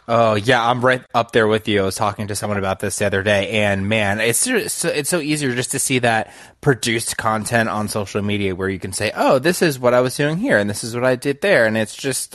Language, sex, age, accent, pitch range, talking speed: English, male, 20-39, American, 95-115 Hz, 270 wpm